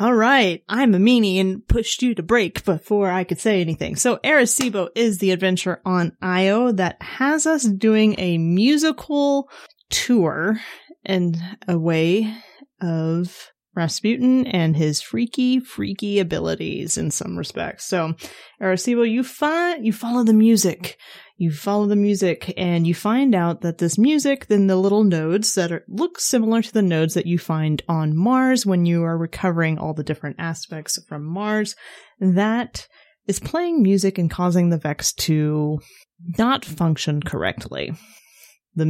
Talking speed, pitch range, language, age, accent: 155 wpm, 165-215 Hz, English, 30-49, American